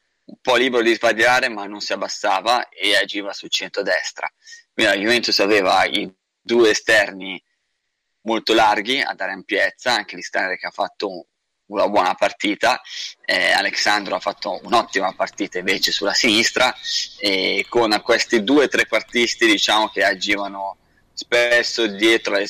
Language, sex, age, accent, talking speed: Italian, male, 20-39, native, 145 wpm